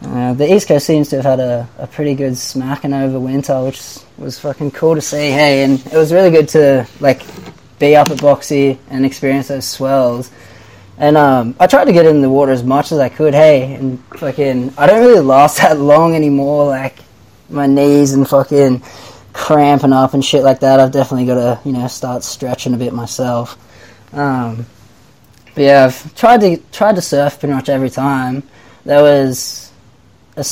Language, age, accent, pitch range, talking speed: English, 20-39, Australian, 125-145 Hz, 195 wpm